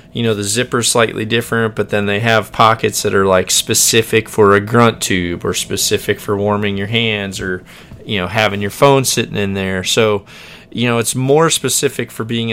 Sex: male